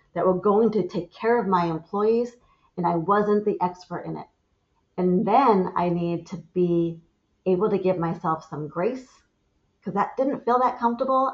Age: 40-59